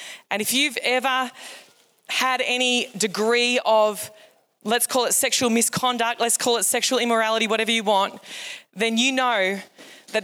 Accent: Australian